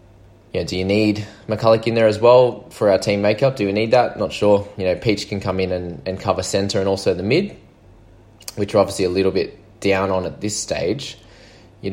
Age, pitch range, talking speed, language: 20-39, 90-110 Hz, 235 wpm, English